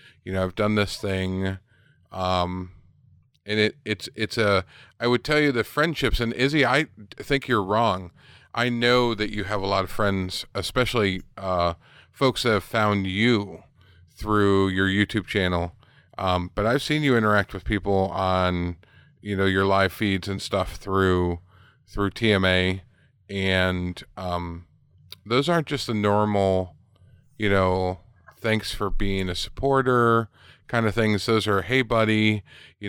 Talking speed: 155 wpm